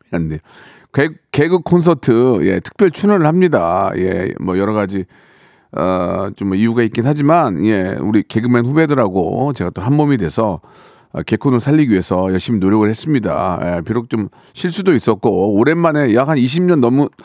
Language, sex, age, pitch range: Korean, male, 40-59, 110-155 Hz